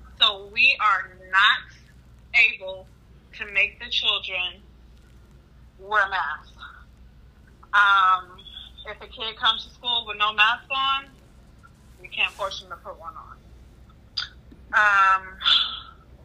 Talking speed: 115 wpm